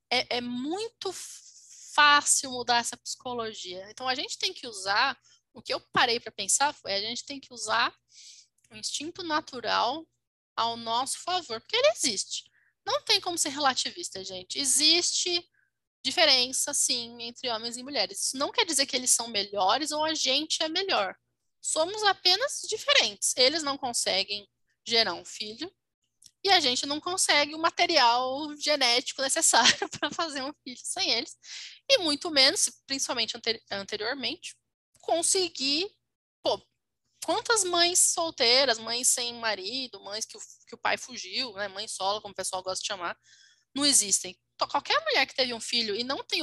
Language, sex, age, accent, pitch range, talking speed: Portuguese, female, 10-29, Brazilian, 235-330 Hz, 160 wpm